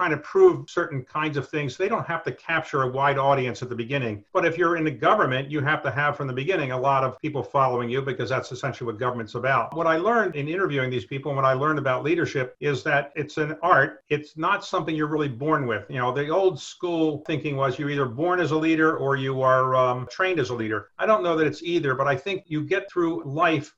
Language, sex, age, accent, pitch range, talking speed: English, male, 50-69, American, 135-165 Hz, 255 wpm